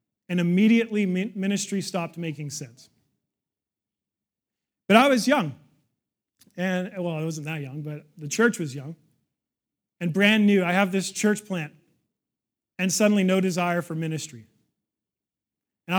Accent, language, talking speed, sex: American, English, 135 wpm, male